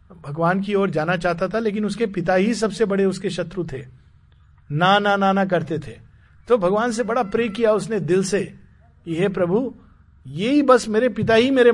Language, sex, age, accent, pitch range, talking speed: Hindi, male, 50-69, native, 155-235 Hz, 195 wpm